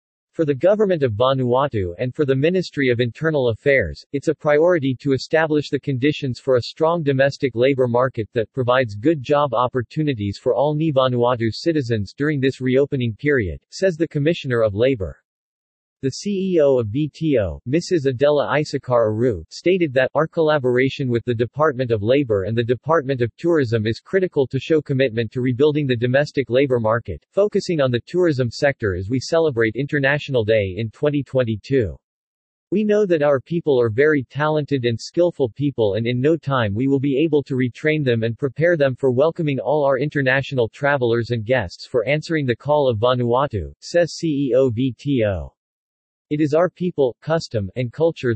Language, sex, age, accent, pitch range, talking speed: English, male, 40-59, American, 120-150 Hz, 170 wpm